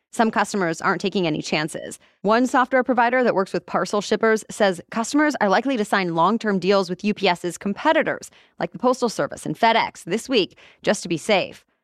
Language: English